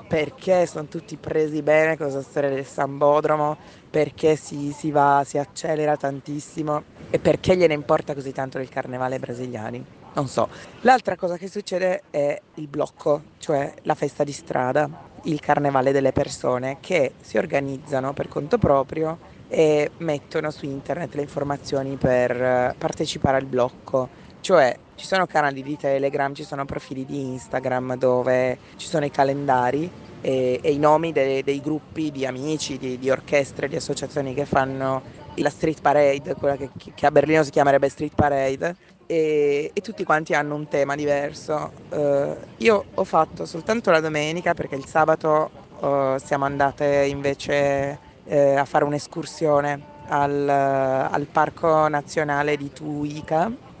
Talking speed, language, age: 145 wpm, Italian, 20-39